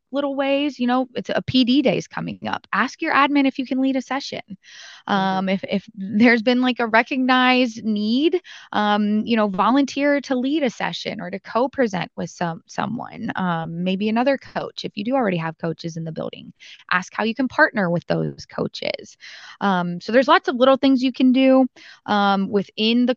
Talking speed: 195 wpm